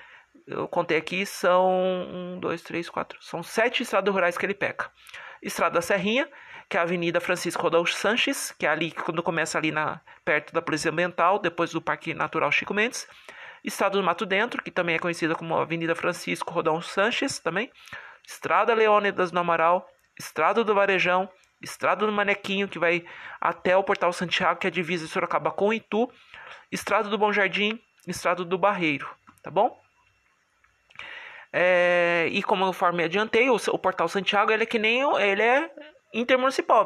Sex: male